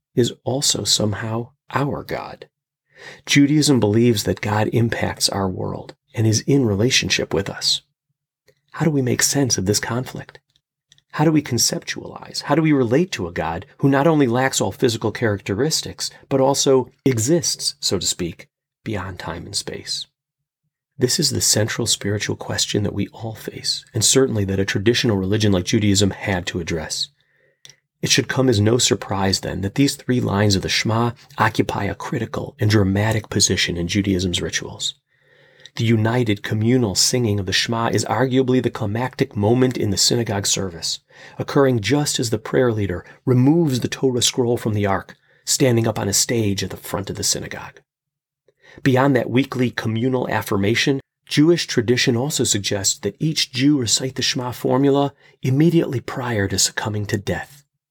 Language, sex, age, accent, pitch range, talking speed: English, male, 30-49, American, 105-140 Hz, 165 wpm